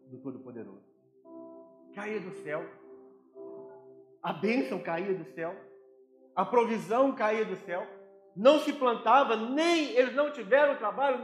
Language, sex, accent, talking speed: Portuguese, male, Brazilian, 125 wpm